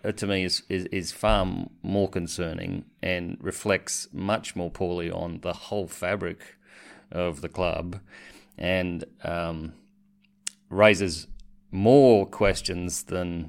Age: 30-49